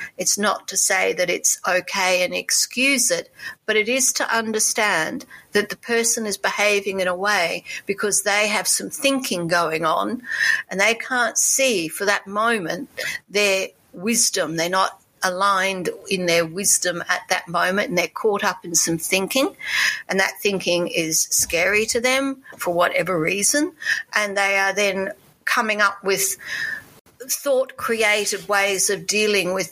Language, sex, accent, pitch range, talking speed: English, female, Australian, 180-235 Hz, 155 wpm